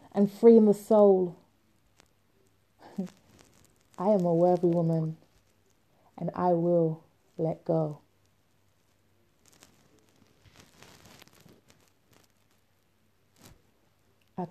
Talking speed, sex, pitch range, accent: 60 wpm, female, 110-180 Hz, British